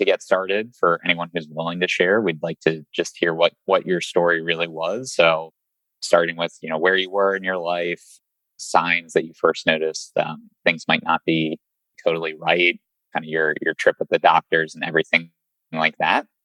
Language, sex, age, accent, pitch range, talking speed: English, male, 20-39, American, 80-90 Hz, 200 wpm